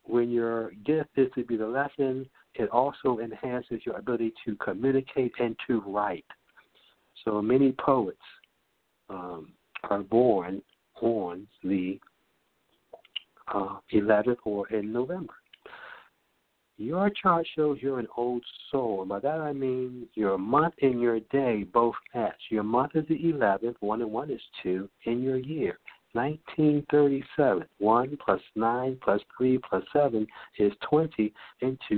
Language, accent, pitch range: English, American, 115-145 Hz